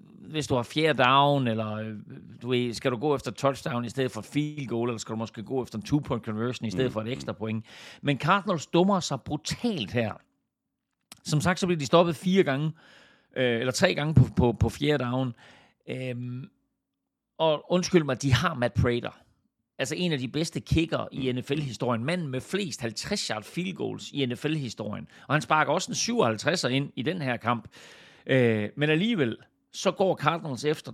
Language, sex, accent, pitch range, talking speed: Danish, male, native, 120-155 Hz, 180 wpm